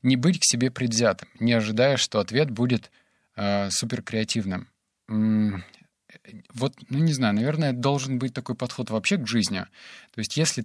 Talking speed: 160 wpm